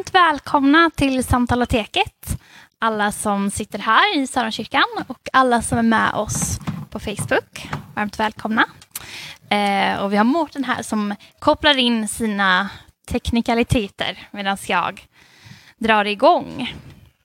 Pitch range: 215-290 Hz